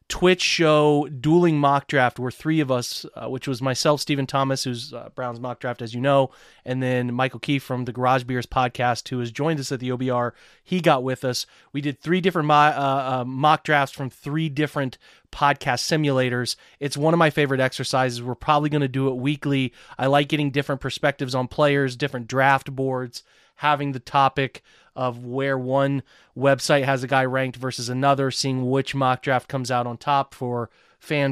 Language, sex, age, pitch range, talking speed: English, male, 30-49, 125-145 Hz, 195 wpm